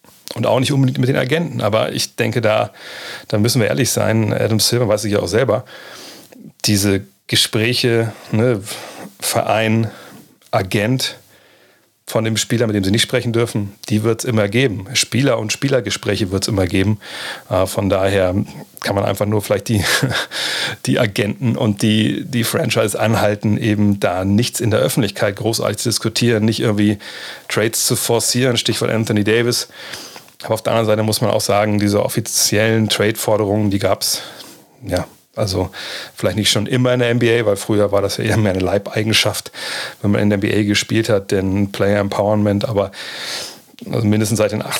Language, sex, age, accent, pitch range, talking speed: German, male, 40-59, German, 100-120 Hz, 170 wpm